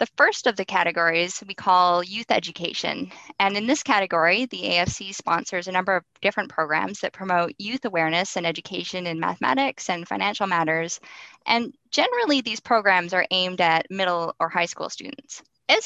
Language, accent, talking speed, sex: English, American, 170 wpm, female